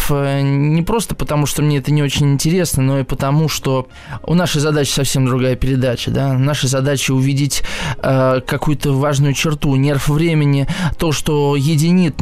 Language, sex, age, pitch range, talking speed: Russian, male, 20-39, 135-160 Hz, 150 wpm